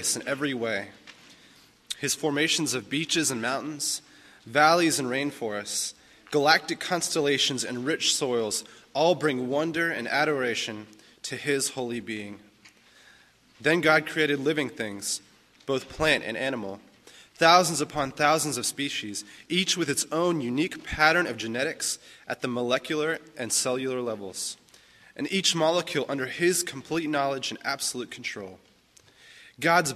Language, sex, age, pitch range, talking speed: English, male, 20-39, 120-155 Hz, 130 wpm